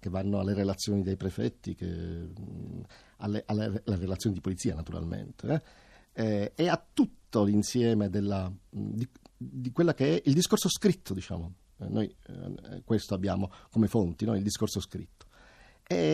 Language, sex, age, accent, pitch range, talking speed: Italian, male, 50-69, native, 100-155 Hz, 145 wpm